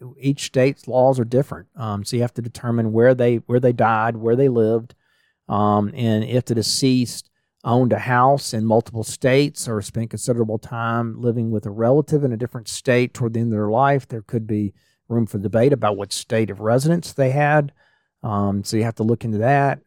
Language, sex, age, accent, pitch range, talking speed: English, male, 40-59, American, 105-130 Hz, 210 wpm